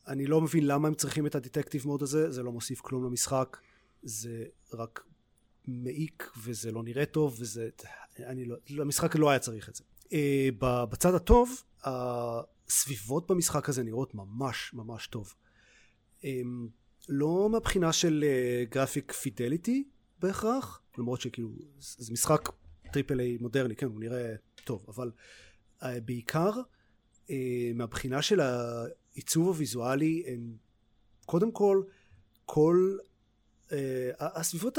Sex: male